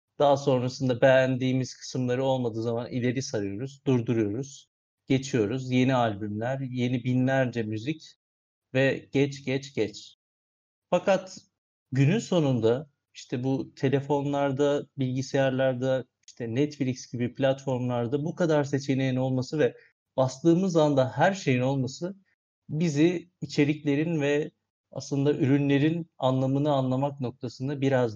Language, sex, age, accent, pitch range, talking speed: Turkish, male, 50-69, native, 125-145 Hz, 105 wpm